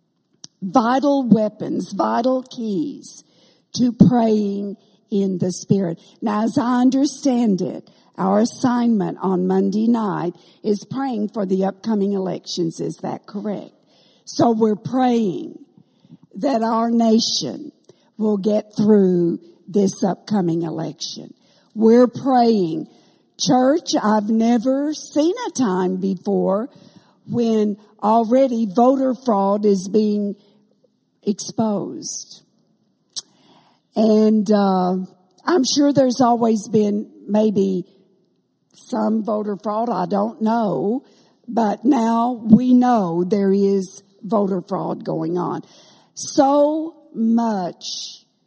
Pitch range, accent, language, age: 195-240 Hz, American, English, 60-79